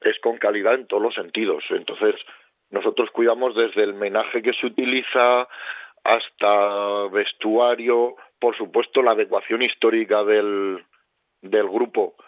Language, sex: Spanish, male